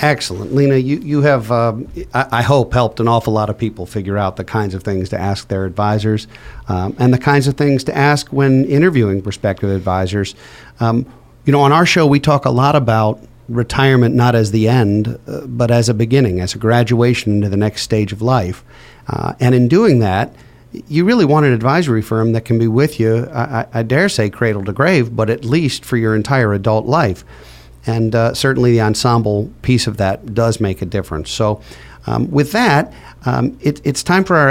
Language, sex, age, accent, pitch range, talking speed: English, male, 50-69, American, 105-135 Hz, 210 wpm